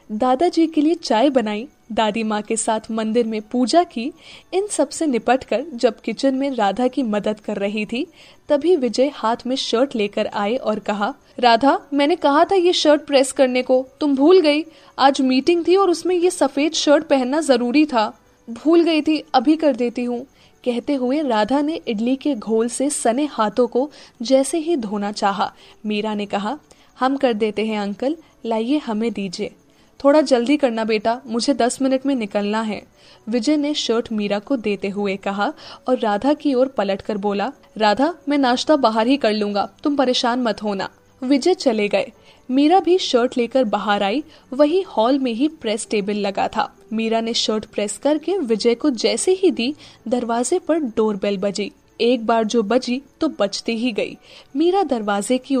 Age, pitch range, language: 10-29, 220-290 Hz, Hindi